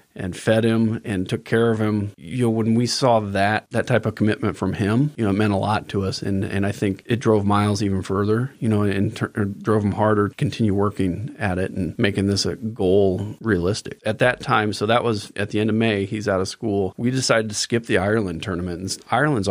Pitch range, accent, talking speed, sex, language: 95-115 Hz, American, 235 wpm, male, English